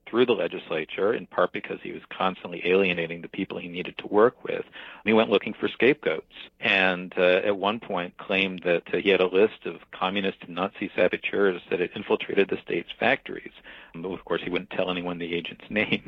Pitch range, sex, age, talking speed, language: 95-110 Hz, male, 50-69, 205 wpm, English